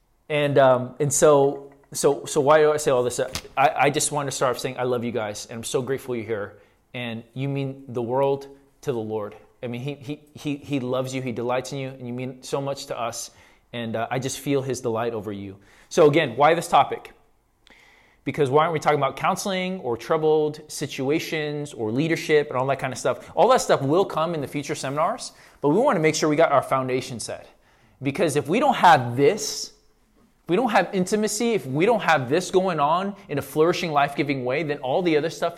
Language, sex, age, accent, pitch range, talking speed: English, male, 20-39, American, 125-170 Hz, 230 wpm